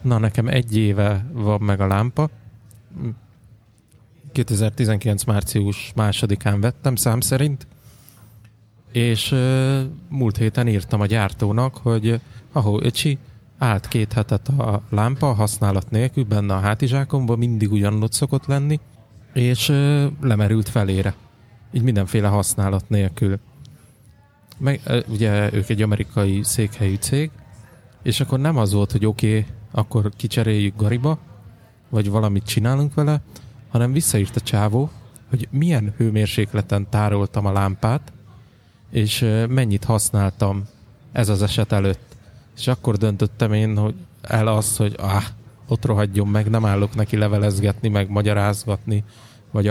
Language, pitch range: Hungarian, 105-125 Hz